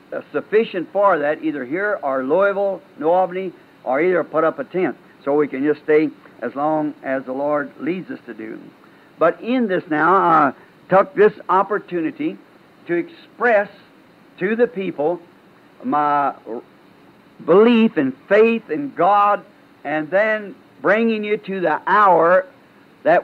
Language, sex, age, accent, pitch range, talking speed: English, male, 60-79, American, 160-215 Hz, 145 wpm